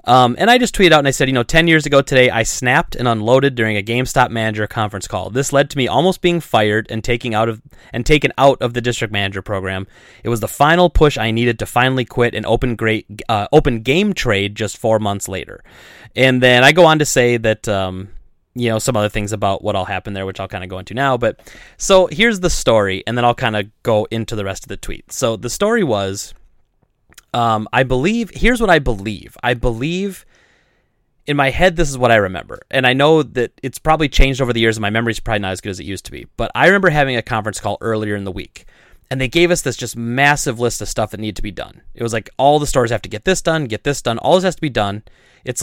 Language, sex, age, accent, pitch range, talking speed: English, male, 20-39, American, 105-140 Hz, 260 wpm